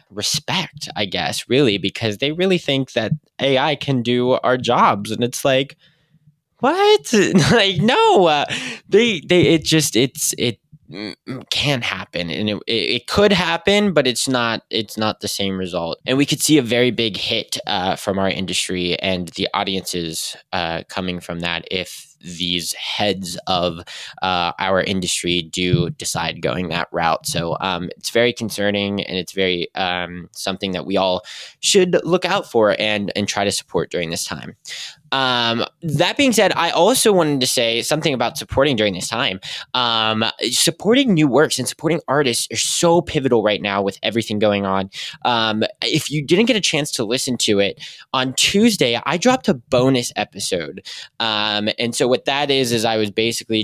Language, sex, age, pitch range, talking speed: English, male, 20-39, 100-145 Hz, 175 wpm